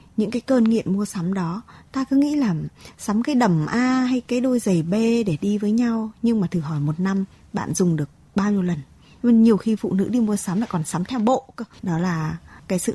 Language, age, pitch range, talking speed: Vietnamese, 20-39, 175-235 Hz, 240 wpm